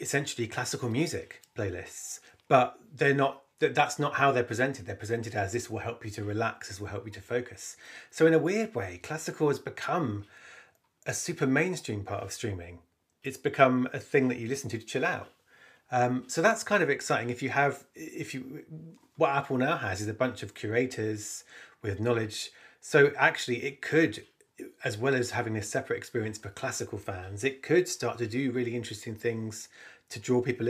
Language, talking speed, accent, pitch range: English, 195 wpm, British, 110-140 Hz